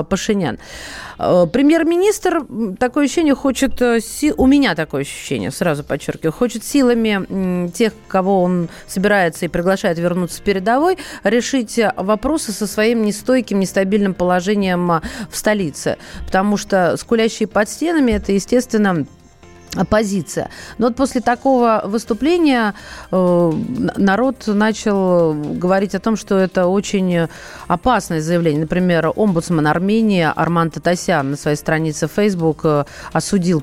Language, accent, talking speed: Russian, native, 110 wpm